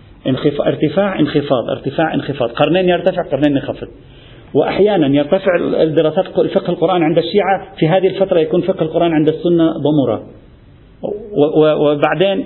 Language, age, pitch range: Arabic, 50-69, 145-190 Hz